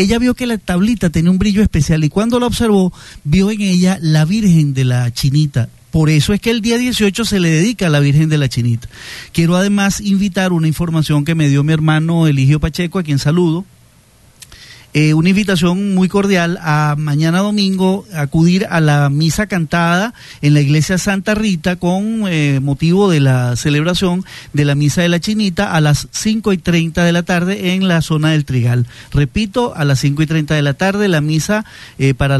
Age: 40-59